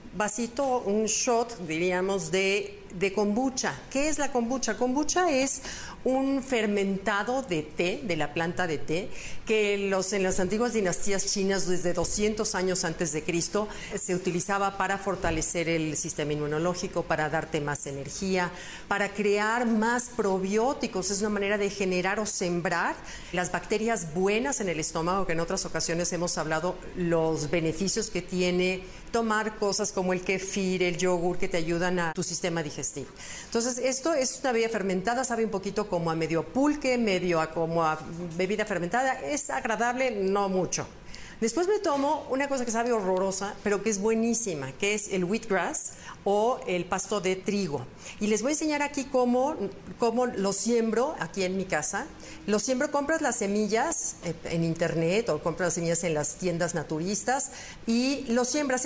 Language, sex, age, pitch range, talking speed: Spanish, female, 40-59, 175-235 Hz, 165 wpm